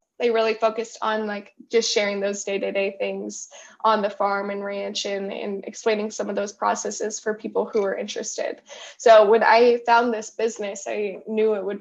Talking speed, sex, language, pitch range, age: 190 wpm, female, English, 210-235 Hz, 10-29